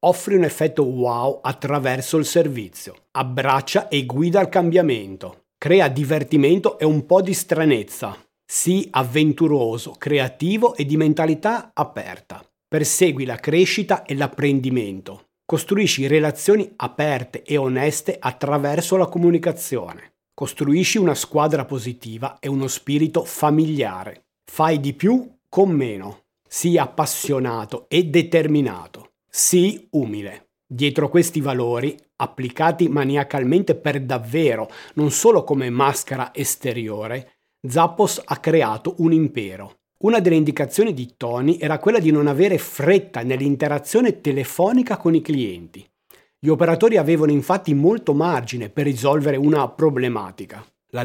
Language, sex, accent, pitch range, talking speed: Italian, male, native, 135-175 Hz, 120 wpm